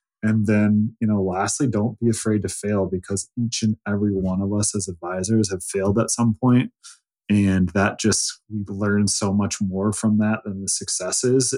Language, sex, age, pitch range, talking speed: English, male, 30-49, 95-115 Hz, 190 wpm